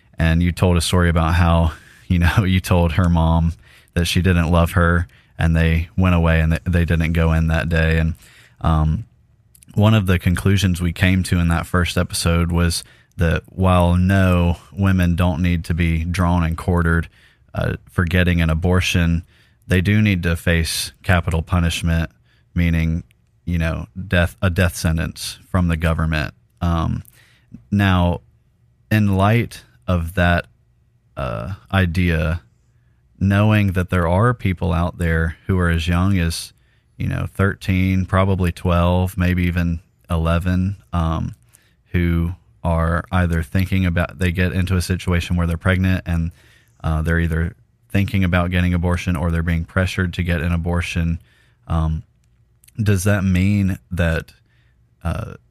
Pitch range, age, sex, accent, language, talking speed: 85-95 Hz, 30-49, male, American, English, 150 wpm